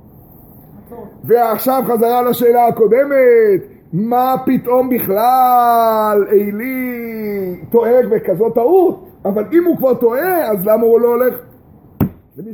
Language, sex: Hebrew, male